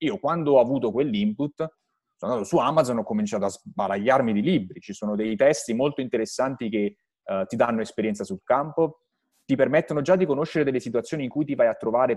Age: 30-49